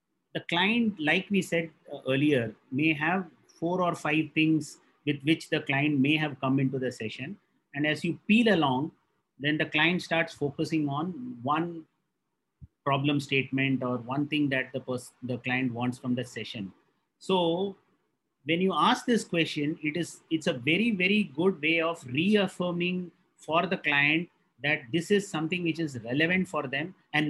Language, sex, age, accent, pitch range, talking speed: English, male, 30-49, Indian, 140-175 Hz, 170 wpm